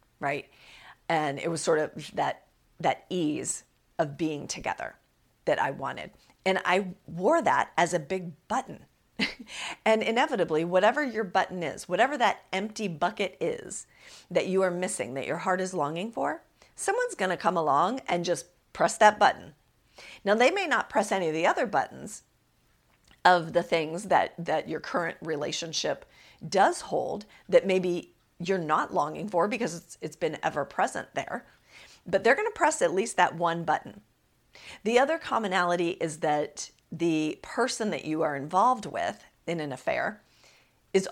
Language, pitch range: English, 165-235 Hz